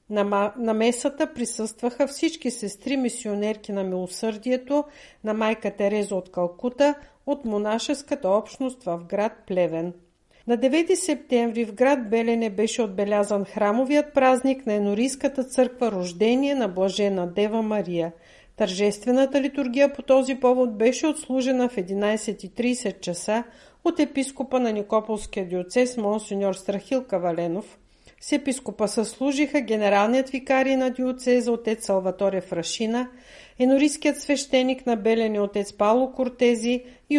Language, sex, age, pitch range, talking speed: Bulgarian, female, 50-69, 205-265 Hz, 120 wpm